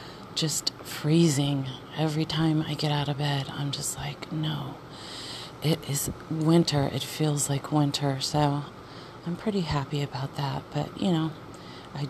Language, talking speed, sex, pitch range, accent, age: English, 150 wpm, female, 140-160 Hz, American, 30-49